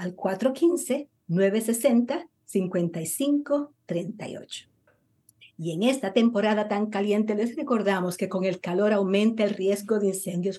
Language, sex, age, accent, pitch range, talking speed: Spanish, female, 50-69, American, 180-245 Hz, 110 wpm